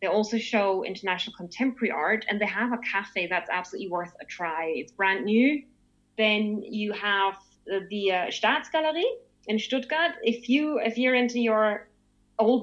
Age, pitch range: 20-39, 200-240 Hz